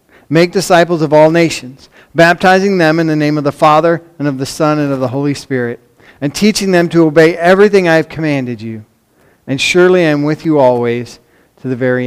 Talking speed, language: 210 wpm, English